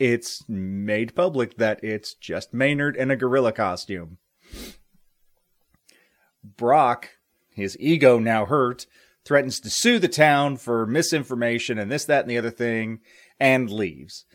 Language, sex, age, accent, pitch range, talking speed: English, male, 30-49, American, 110-135 Hz, 135 wpm